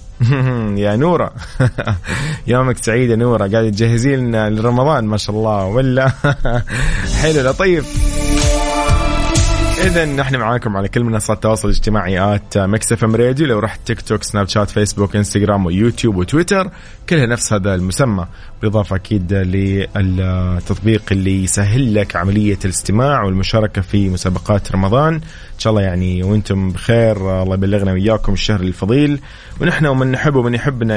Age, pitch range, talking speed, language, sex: 20-39, 95-115 Hz, 135 wpm, Arabic, male